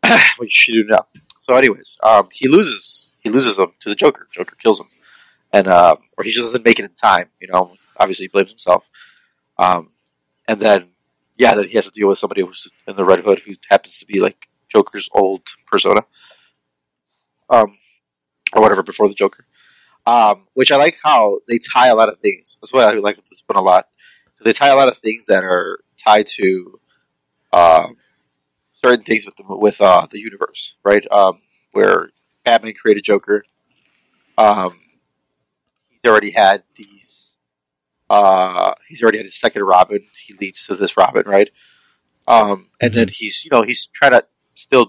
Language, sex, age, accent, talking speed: English, male, 30-49, American, 185 wpm